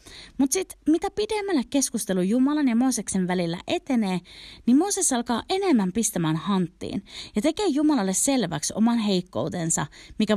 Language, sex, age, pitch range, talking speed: Finnish, female, 30-49, 180-275 Hz, 135 wpm